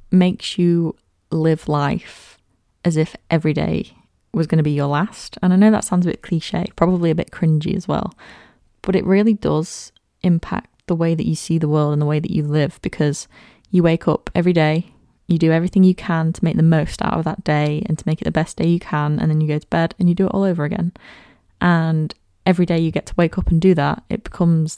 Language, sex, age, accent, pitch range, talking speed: English, female, 20-39, British, 150-180 Hz, 240 wpm